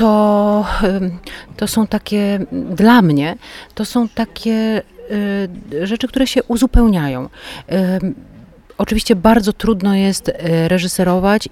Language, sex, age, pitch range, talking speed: Polish, female, 40-59, 160-195 Hz, 95 wpm